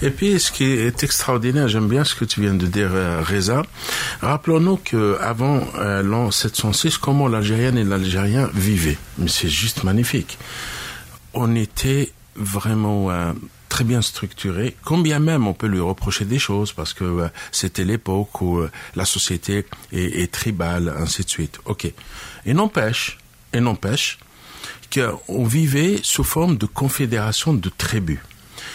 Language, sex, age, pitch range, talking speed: French, male, 60-79, 100-150 Hz, 150 wpm